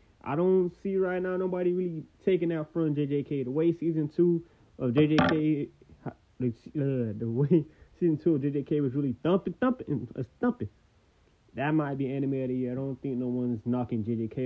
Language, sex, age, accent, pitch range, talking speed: English, male, 20-39, American, 115-140 Hz, 180 wpm